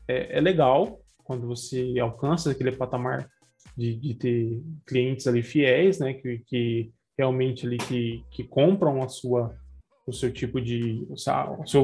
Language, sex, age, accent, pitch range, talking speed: Portuguese, male, 20-39, Brazilian, 125-160 Hz, 145 wpm